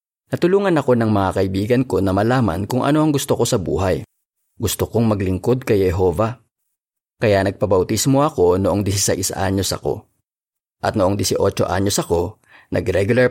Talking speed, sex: 150 wpm, male